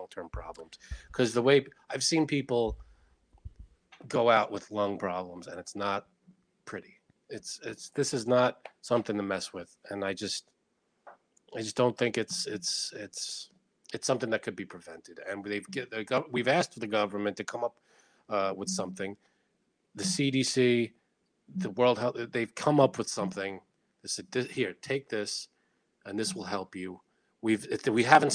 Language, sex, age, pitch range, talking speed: English, male, 30-49, 100-130 Hz, 165 wpm